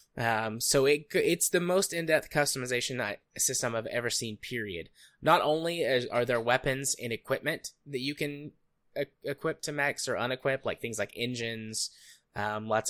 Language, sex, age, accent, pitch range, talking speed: English, male, 10-29, American, 110-140 Hz, 160 wpm